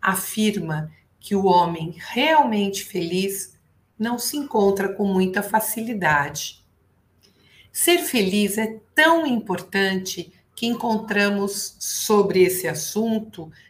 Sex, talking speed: female, 95 wpm